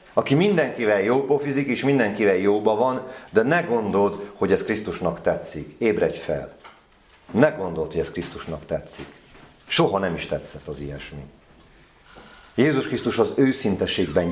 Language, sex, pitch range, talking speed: Hungarian, male, 90-130 Hz, 140 wpm